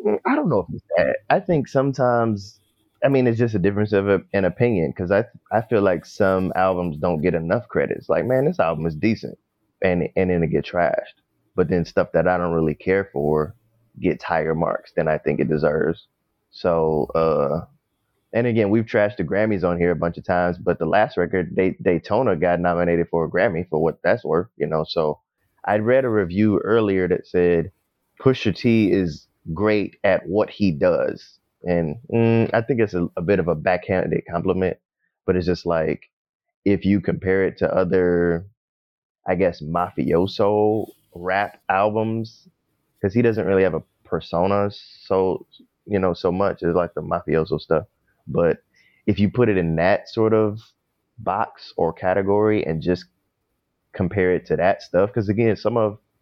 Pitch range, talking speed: 90-110 Hz, 185 wpm